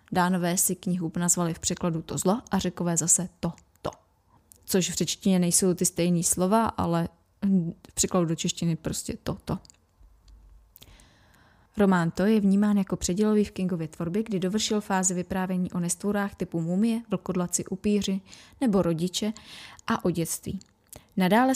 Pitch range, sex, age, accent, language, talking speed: 175-210 Hz, female, 20-39, native, Czech, 145 wpm